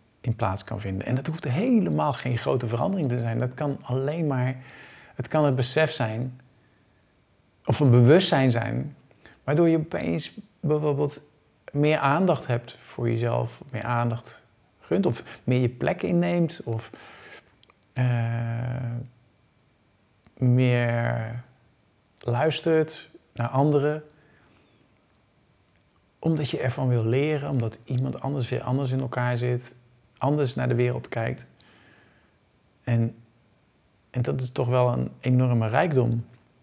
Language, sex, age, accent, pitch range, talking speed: Dutch, male, 50-69, Dutch, 115-140 Hz, 125 wpm